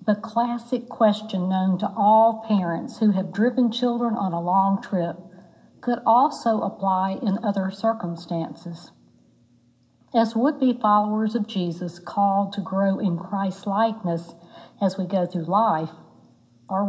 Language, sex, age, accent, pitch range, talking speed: English, female, 60-79, American, 185-225 Hz, 130 wpm